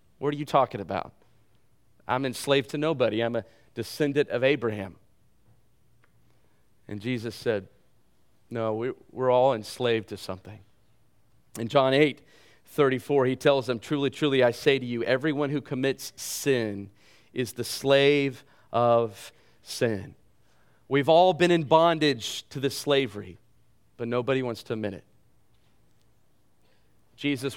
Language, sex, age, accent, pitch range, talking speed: English, male, 40-59, American, 115-170 Hz, 130 wpm